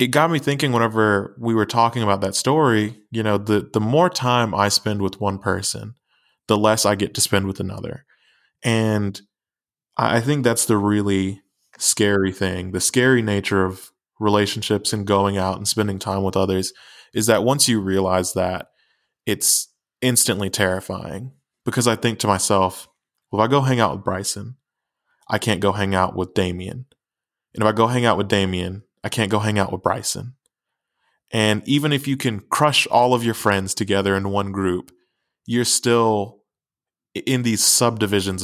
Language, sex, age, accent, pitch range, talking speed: English, male, 20-39, American, 95-115 Hz, 180 wpm